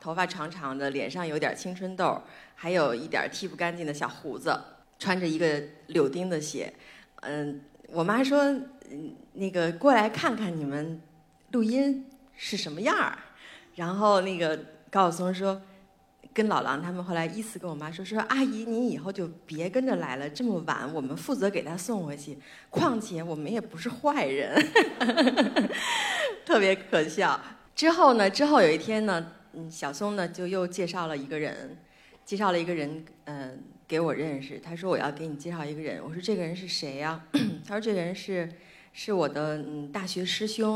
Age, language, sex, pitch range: 30-49, Chinese, female, 155-205 Hz